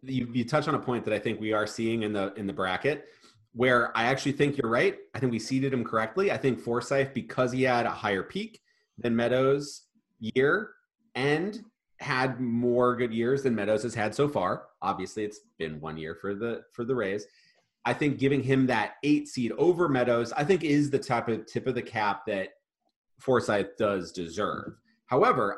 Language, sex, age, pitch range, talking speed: English, male, 30-49, 115-175 Hz, 200 wpm